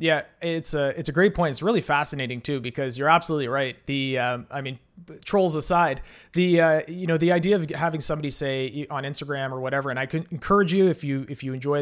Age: 30-49